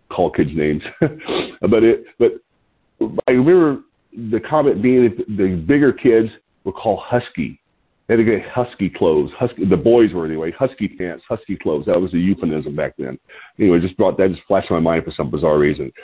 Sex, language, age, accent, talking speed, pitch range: male, English, 40-59, American, 190 wpm, 95-140 Hz